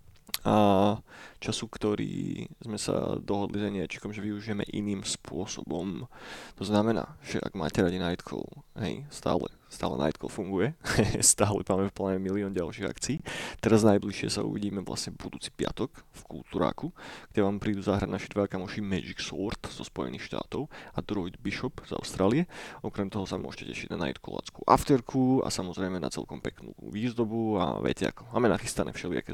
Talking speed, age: 160 wpm, 20-39